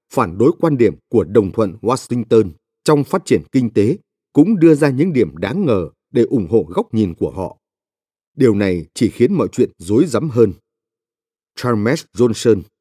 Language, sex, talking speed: Vietnamese, male, 180 wpm